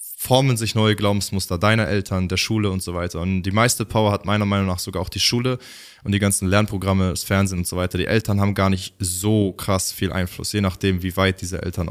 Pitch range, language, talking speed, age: 95-115 Hz, German, 235 wpm, 20-39